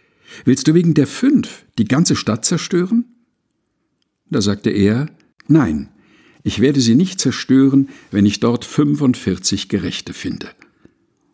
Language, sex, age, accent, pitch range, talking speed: German, male, 60-79, German, 100-135 Hz, 125 wpm